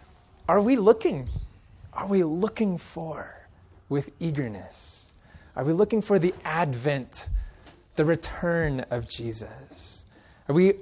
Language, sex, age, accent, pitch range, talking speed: English, male, 20-39, American, 110-175 Hz, 115 wpm